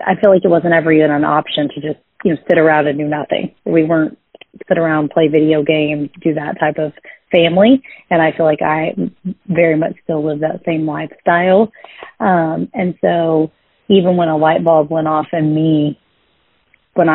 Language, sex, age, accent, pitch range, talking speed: English, female, 30-49, American, 155-170 Hz, 190 wpm